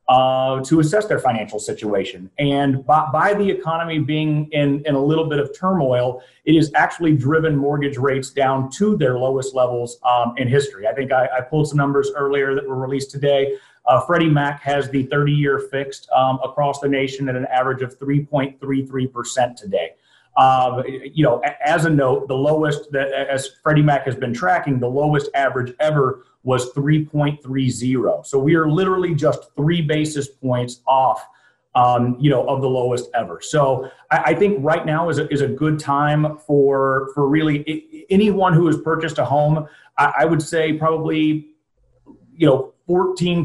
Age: 30-49